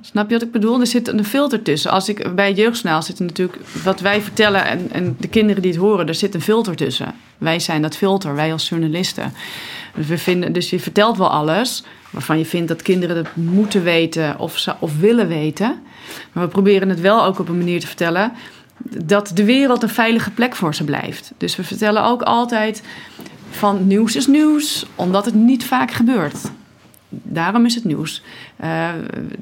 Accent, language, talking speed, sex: Dutch, Dutch, 190 wpm, female